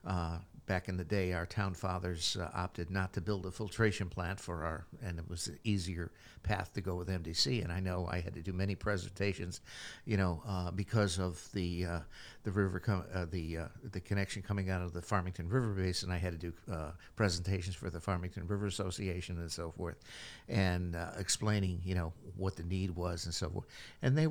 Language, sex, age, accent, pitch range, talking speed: English, male, 60-79, American, 90-105 Hz, 215 wpm